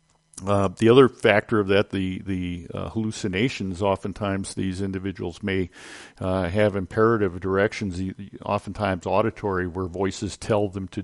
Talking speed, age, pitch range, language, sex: 135 wpm, 50-69, 95-115 Hz, English, male